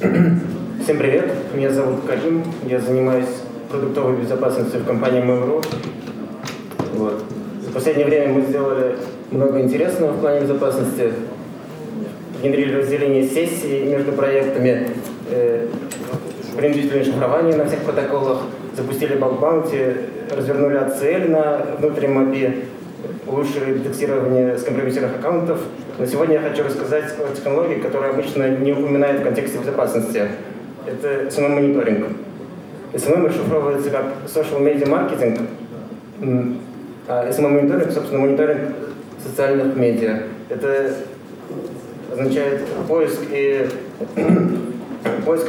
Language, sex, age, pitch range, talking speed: Russian, male, 20-39, 130-145 Hz, 100 wpm